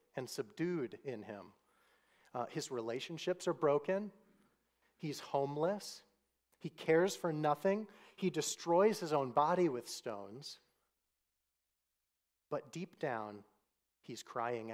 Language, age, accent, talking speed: English, 40-59, American, 110 wpm